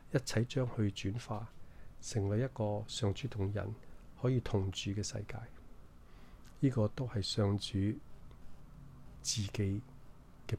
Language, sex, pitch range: Chinese, male, 100-125 Hz